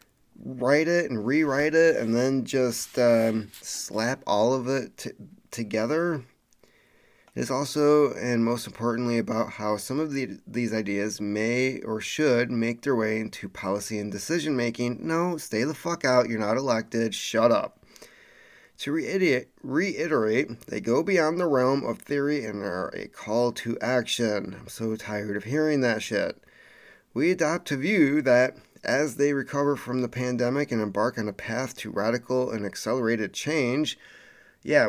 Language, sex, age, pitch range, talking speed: English, male, 30-49, 115-145 Hz, 160 wpm